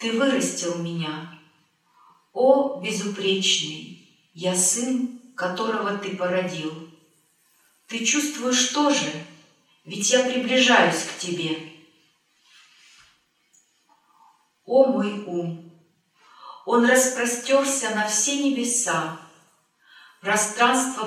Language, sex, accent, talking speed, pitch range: Russian, female, native, 75 wpm, 170-240 Hz